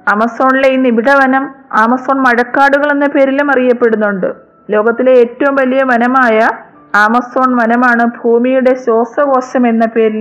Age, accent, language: 20-39, native, Malayalam